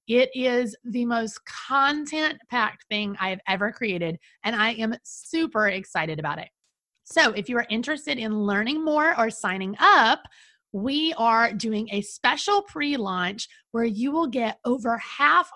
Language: English